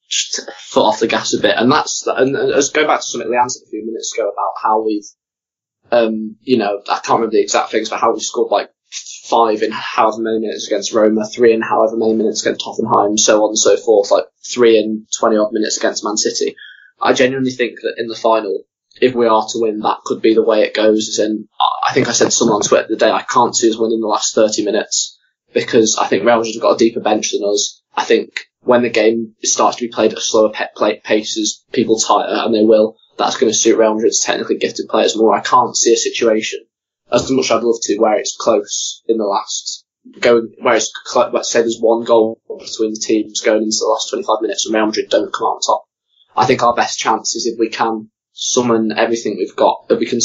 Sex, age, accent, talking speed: male, 20-39, British, 245 wpm